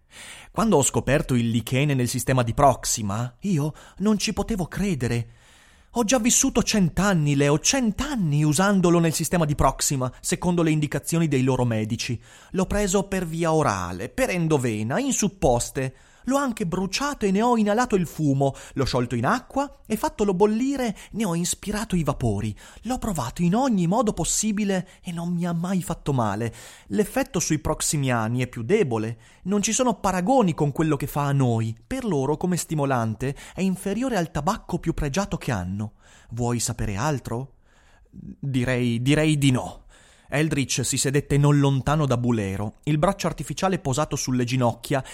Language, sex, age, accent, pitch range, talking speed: Italian, male, 30-49, native, 125-195 Hz, 165 wpm